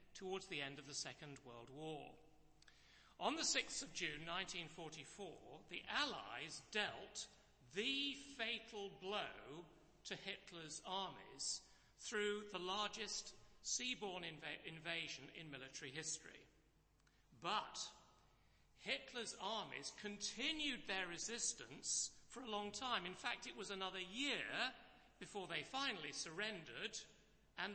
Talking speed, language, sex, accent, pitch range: 110 wpm, English, male, British, 155-215 Hz